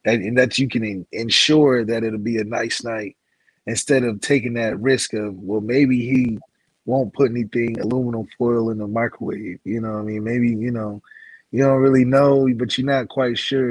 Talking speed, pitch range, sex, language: 195 wpm, 110-135 Hz, male, English